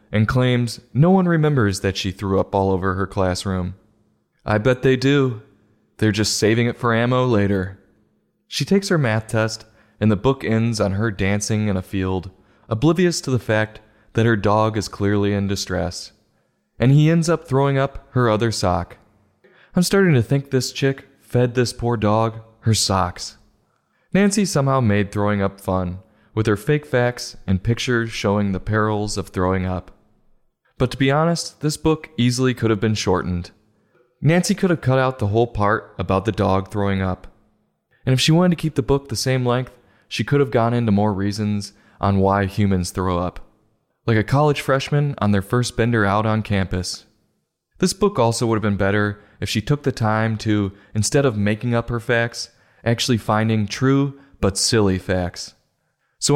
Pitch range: 100-130 Hz